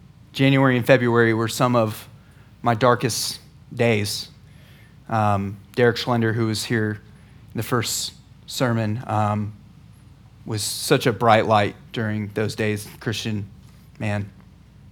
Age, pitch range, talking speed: 20-39, 110-135 Hz, 120 wpm